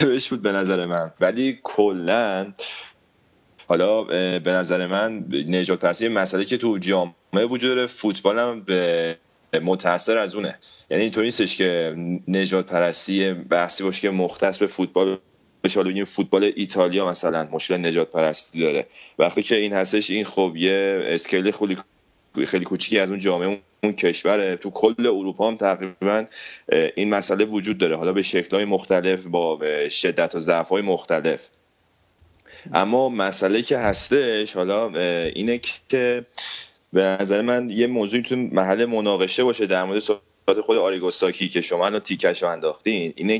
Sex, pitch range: male, 90-115 Hz